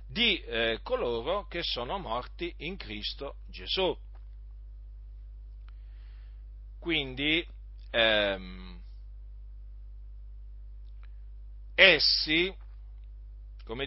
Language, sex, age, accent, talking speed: Italian, male, 40-59, native, 55 wpm